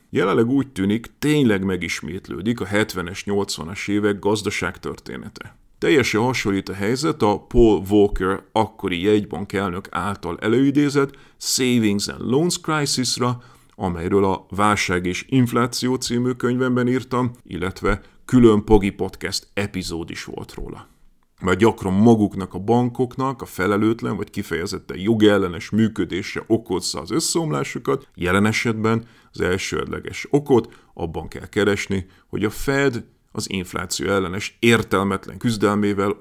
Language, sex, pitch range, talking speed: Hungarian, male, 95-120 Hz, 115 wpm